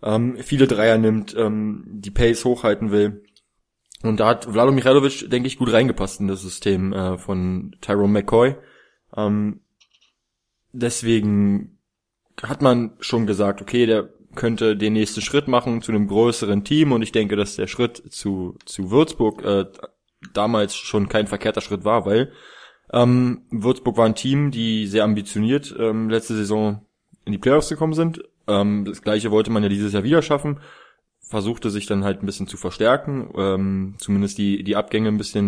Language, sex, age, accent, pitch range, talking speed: German, male, 20-39, German, 100-120 Hz, 160 wpm